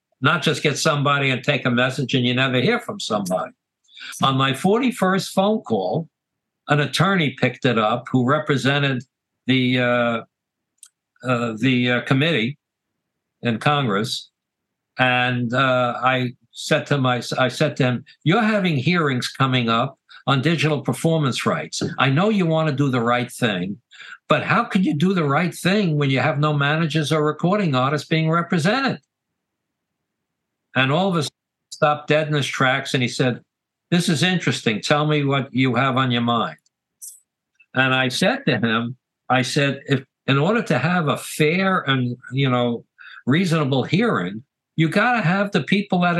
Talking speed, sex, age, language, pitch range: 170 wpm, male, 60-79, English, 125-160 Hz